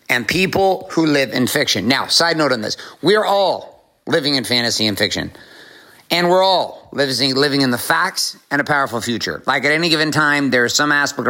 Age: 50-69